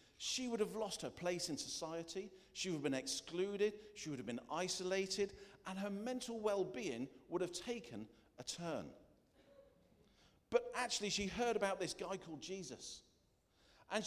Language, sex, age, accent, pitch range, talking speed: English, male, 50-69, British, 145-210 Hz, 160 wpm